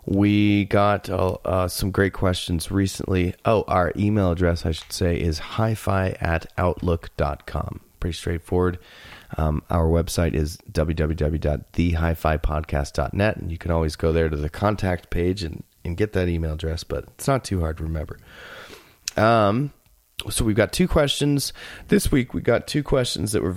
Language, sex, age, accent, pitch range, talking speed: English, male, 30-49, American, 80-105 Hz, 160 wpm